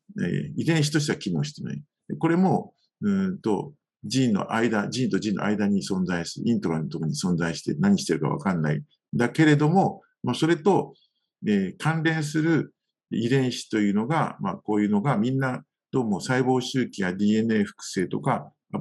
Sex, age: male, 50-69